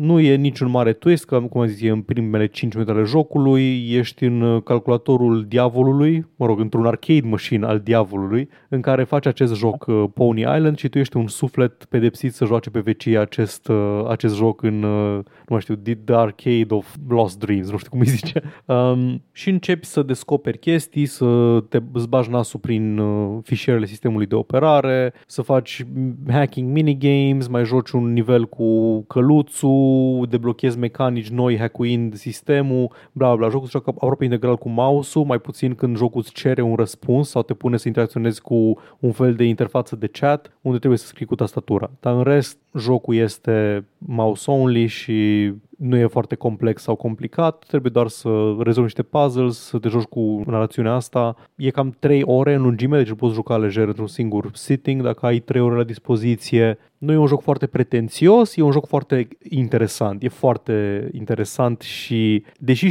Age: 20-39